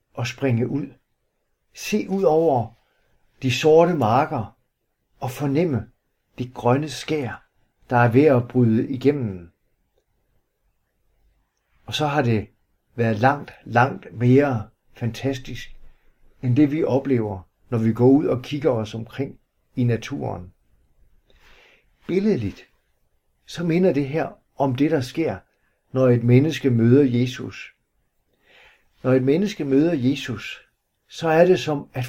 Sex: male